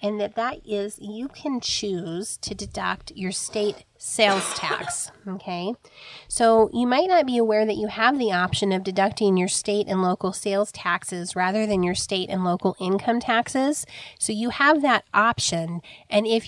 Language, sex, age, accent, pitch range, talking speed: English, female, 30-49, American, 185-230 Hz, 175 wpm